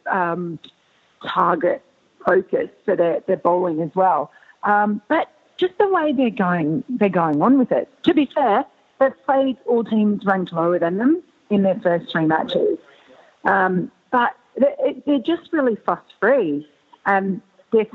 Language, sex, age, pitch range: English, female, 40-59, 175-235 Hz